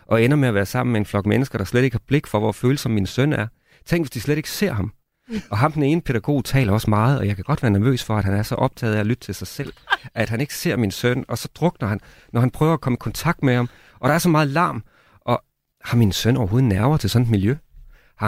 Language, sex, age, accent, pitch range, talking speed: Danish, male, 40-59, native, 105-135 Hz, 295 wpm